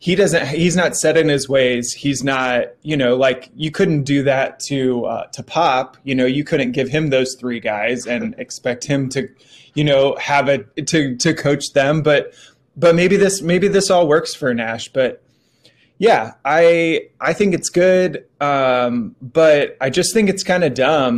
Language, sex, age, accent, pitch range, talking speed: English, male, 20-39, American, 120-155 Hz, 195 wpm